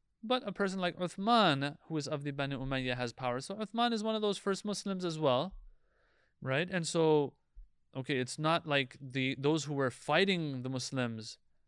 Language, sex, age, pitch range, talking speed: English, male, 30-49, 130-185 Hz, 190 wpm